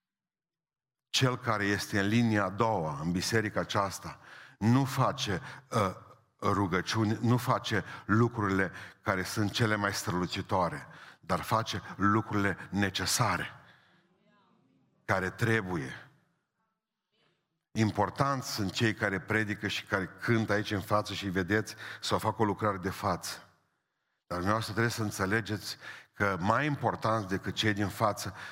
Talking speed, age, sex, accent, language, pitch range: 125 wpm, 50-69, male, native, Romanian, 95-125 Hz